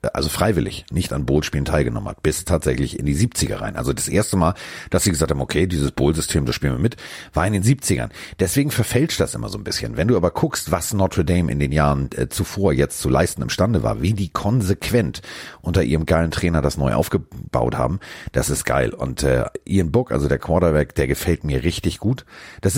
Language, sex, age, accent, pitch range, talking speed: German, male, 40-59, German, 70-105 Hz, 220 wpm